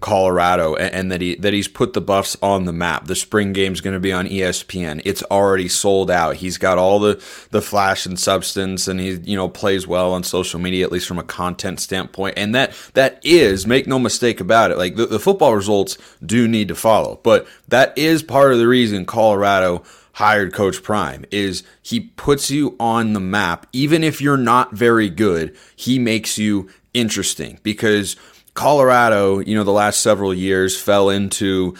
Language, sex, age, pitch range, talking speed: English, male, 30-49, 90-110 Hz, 195 wpm